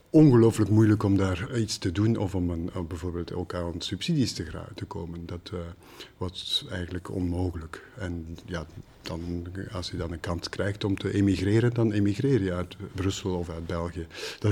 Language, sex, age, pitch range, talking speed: Dutch, male, 50-69, 90-105 Hz, 170 wpm